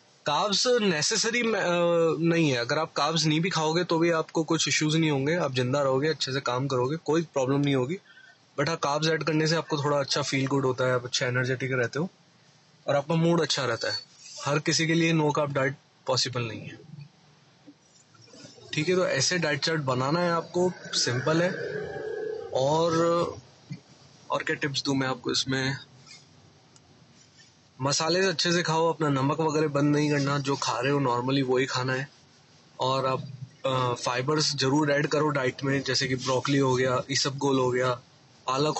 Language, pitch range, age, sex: Hindi, 135-160 Hz, 20-39, male